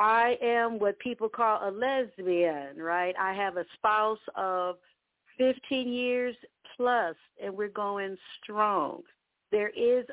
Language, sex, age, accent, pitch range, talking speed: English, female, 50-69, American, 210-250 Hz, 130 wpm